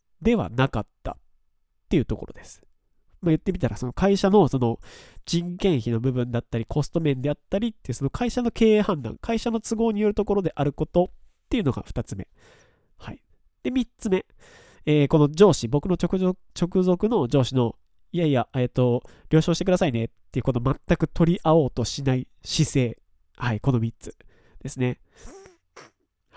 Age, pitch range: 20-39, 120-175 Hz